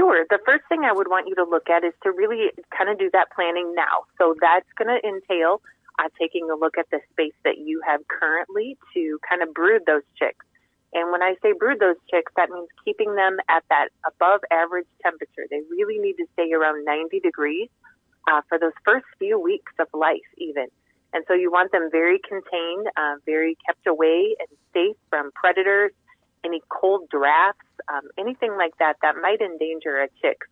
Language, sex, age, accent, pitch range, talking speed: English, female, 30-49, American, 165-265 Hz, 200 wpm